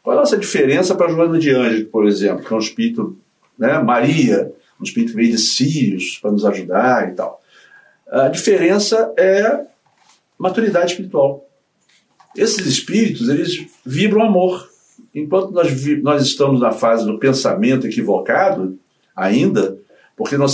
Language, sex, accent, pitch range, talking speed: Portuguese, male, Brazilian, 125-205 Hz, 145 wpm